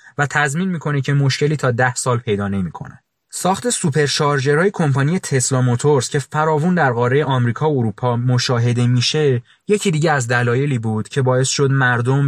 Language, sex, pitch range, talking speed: Persian, male, 125-155 Hz, 160 wpm